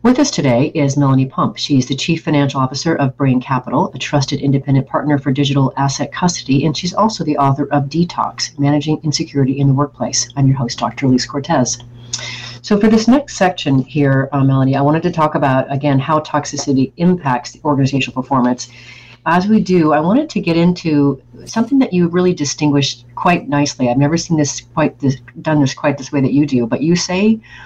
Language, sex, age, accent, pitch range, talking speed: English, female, 40-59, American, 130-160 Hz, 200 wpm